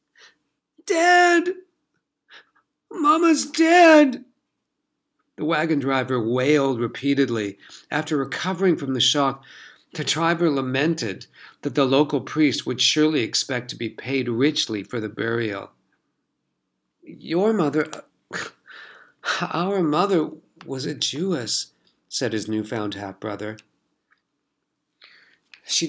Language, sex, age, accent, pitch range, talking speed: English, male, 50-69, American, 120-155 Hz, 95 wpm